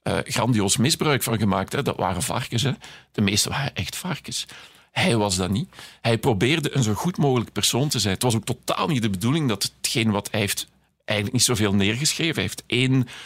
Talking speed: 215 wpm